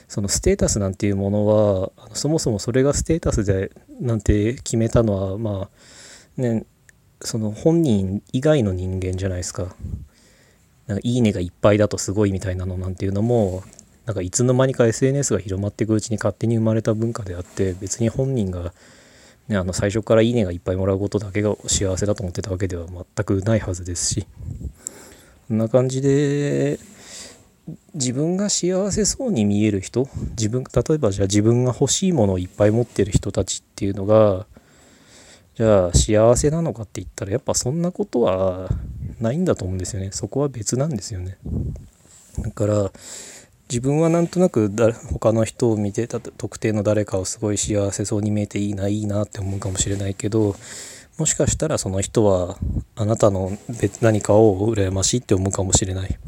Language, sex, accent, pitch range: Japanese, male, native, 95-120 Hz